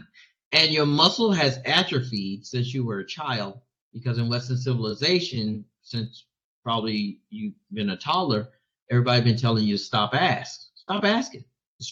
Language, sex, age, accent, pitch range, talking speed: English, male, 40-59, American, 115-165 Hz, 150 wpm